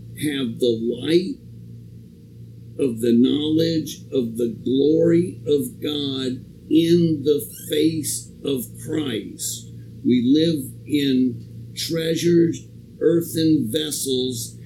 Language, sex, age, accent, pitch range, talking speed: English, male, 50-69, American, 120-155 Hz, 90 wpm